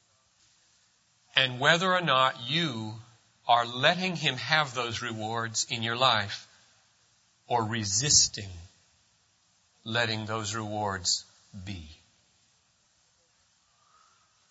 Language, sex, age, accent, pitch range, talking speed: English, male, 40-59, American, 115-150 Hz, 85 wpm